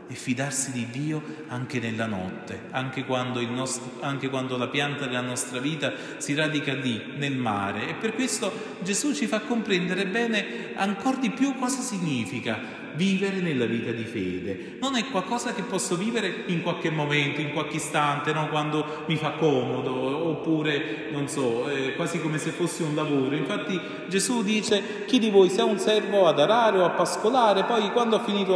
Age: 30-49